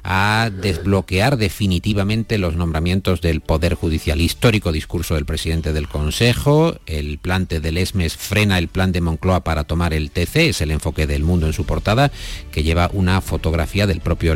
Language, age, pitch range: Spanish, 50-69, 80-110 Hz